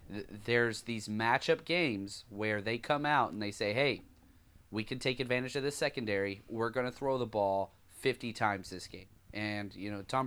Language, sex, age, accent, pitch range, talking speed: English, male, 30-49, American, 100-130 Hz, 195 wpm